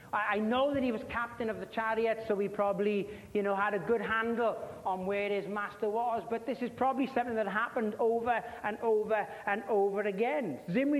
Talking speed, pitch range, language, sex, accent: 200 wpm, 195-235 Hz, English, male, British